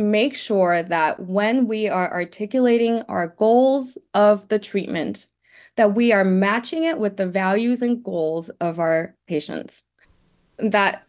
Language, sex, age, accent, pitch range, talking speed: English, female, 20-39, American, 175-215 Hz, 140 wpm